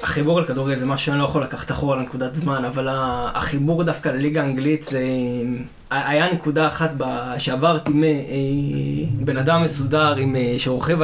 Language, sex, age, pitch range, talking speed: Hebrew, male, 20-39, 140-170 Hz, 140 wpm